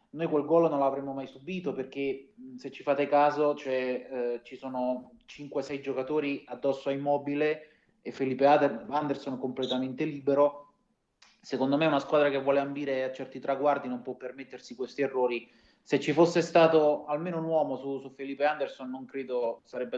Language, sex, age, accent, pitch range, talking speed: Italian, male, 30-49, native, 130-150 Hz, 165 wpm